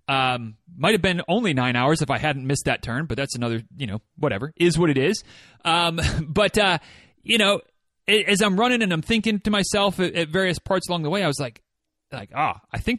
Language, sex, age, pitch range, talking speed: English, male, 30-49, 140-185 Hz, 220 wpm